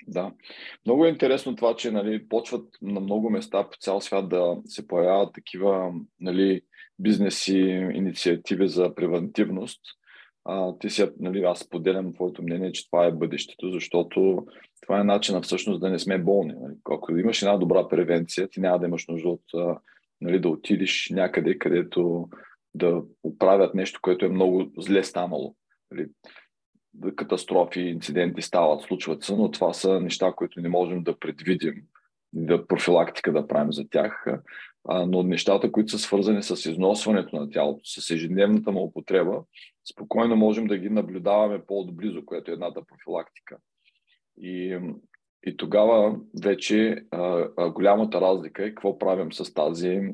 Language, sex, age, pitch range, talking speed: Bulgarian, male, 20-39, 90-100 Hz, 155 wpm